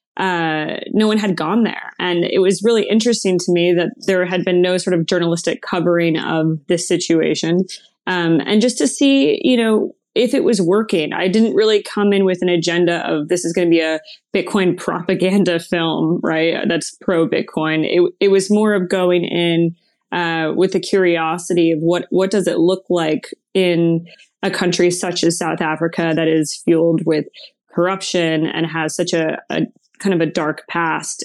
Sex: female